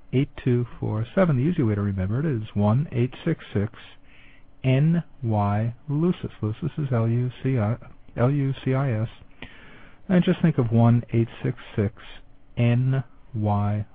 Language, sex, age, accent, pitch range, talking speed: English, male, 50-69, American, 105-130 Hz, 160 wpm